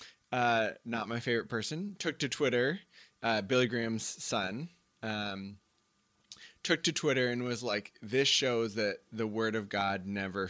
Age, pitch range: 20-39, 115-160 Hz